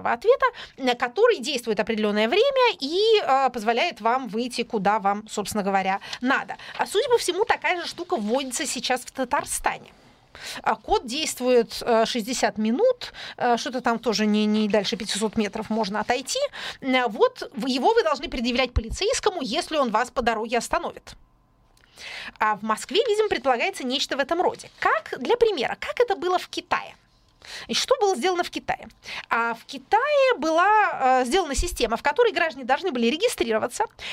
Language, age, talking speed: Russian, 30-49, 150 wpm